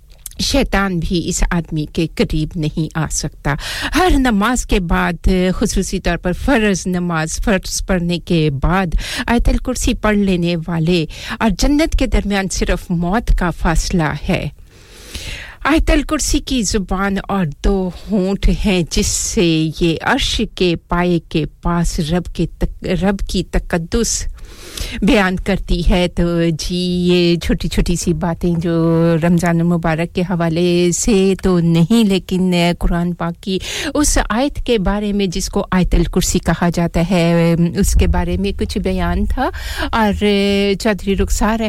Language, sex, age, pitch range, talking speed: English, female, 50-69, 170-205 Hz, 145 wpm